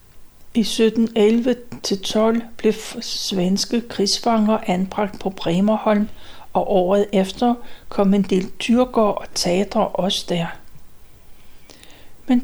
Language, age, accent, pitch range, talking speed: Danish, 60-79, native, 195-230 Hz, 95 wpm